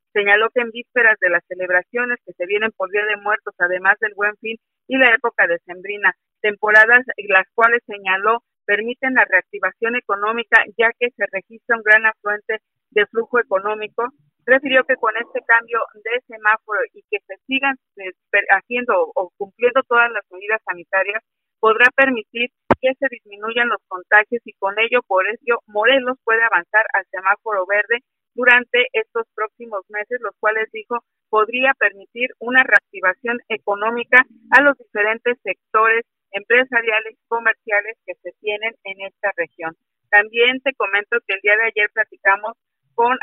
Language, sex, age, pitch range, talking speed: Spanish, female, 50-69, 205-245 Hz, 155 wpm